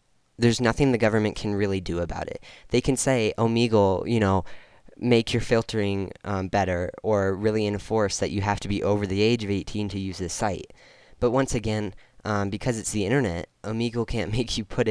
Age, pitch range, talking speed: 10-29, 95-115 Hz, 200 wpm